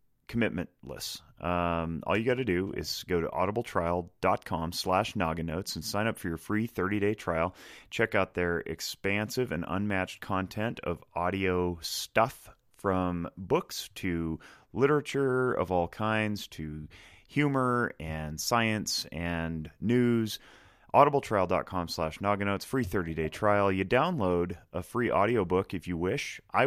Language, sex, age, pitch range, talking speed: English, male, 30-49, 85-105 Hz, 125 wpm